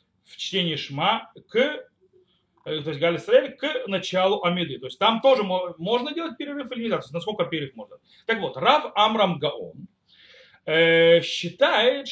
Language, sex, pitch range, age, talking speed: Russian, male, 160-245 Hz, 30-49, 140 wpm